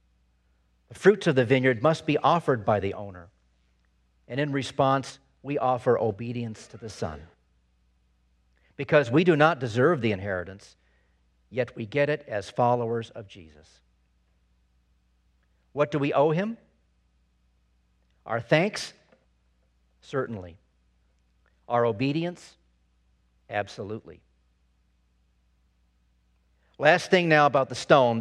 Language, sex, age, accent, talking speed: English, male, 50-69, American, 110 wpm